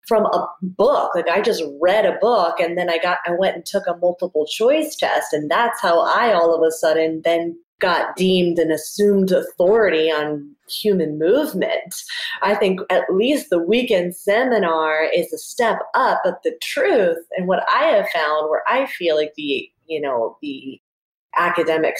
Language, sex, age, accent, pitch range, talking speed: English, female, 20-39, American, 170-235 Hz, 180 wpm